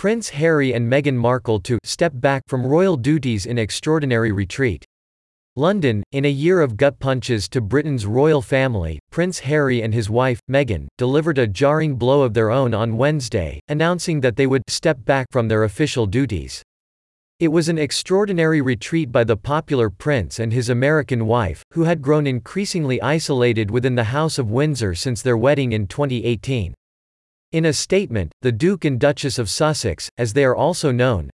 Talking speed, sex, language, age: 175 wpm, male, English, 40-59